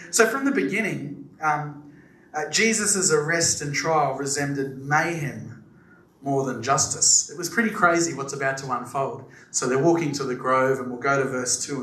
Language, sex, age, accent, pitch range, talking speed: English, male, 30-49, Australian, 135-195 Hz, 180 wpm